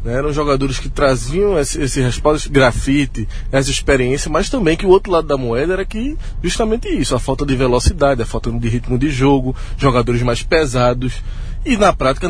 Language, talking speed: Portuguese, 190 wpm